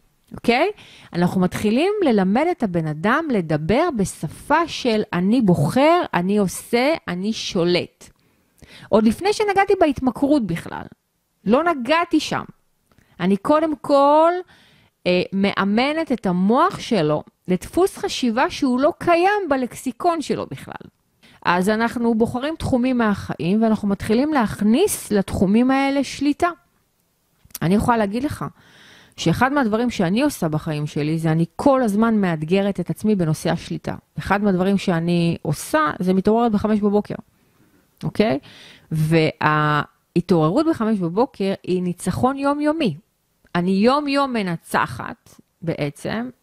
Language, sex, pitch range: Hebrew, female, 175-265 Hz